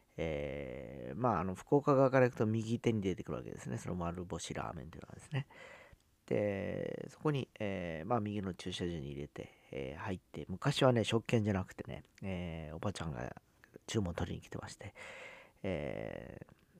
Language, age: Japanese, 40-59